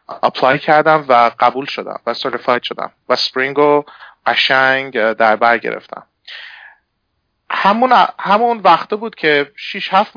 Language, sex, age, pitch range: Persian, male, 30-49, 130-160 Hz